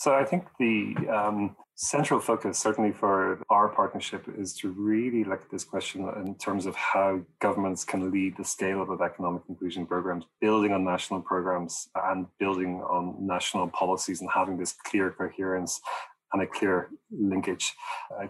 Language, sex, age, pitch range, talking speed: English, male, 30-49, 95-105 Hz, 165 wpm